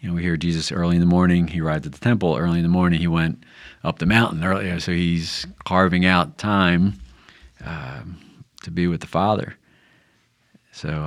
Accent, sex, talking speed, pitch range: American, male, 205 wpm, 85-95 Hz